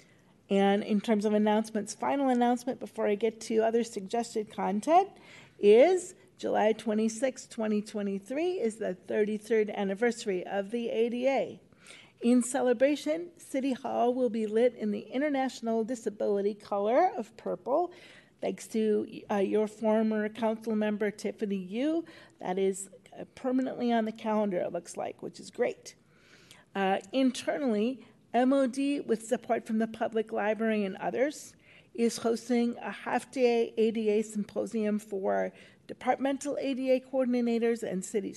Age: 40-59